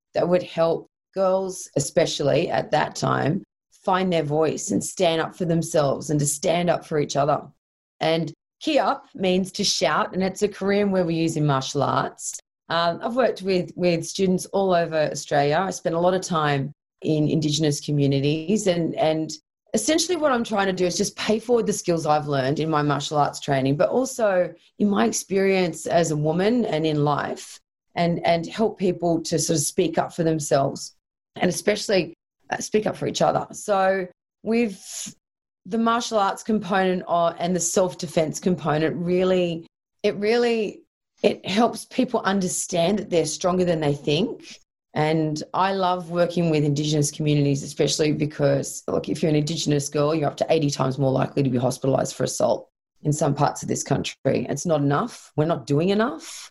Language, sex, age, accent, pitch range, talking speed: English, female, 30-49, Australian, 150-190 Hz, 180 wpm